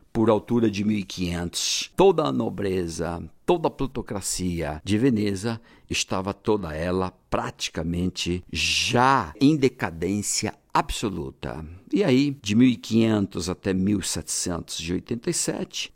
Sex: male